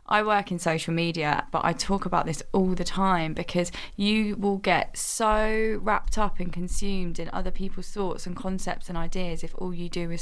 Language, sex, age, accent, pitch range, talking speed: English, female, 20-39, British, 175-205 Hz, 205 wpm